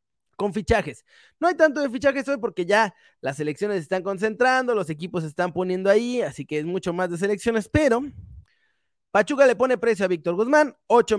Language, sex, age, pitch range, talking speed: Spanish, male, 20-39, 175-245 Hz, 200 wpm